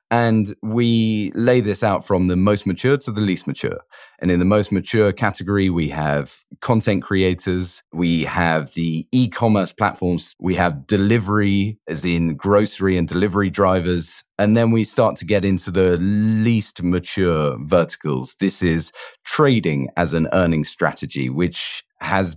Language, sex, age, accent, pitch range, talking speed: English, male, 30-49, British, 80-100 Hz, 155 wpm